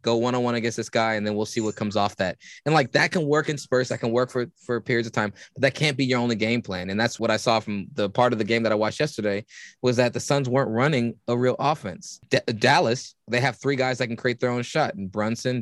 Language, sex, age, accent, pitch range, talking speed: English, male, 20-39, American, 105-125 Hz, 280 wpm